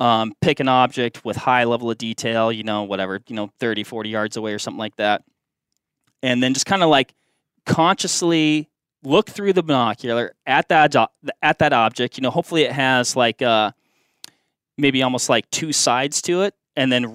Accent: American